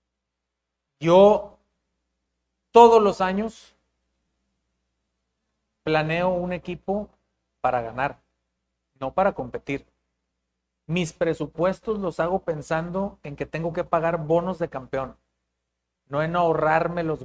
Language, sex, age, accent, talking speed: Spanish, male, 40-59, Mexican, 100 wpm